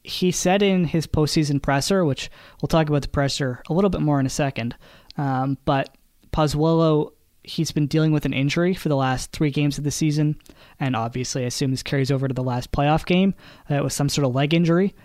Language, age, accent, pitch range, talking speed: English, 20-39, American, 135-165 Hz, 225 wpm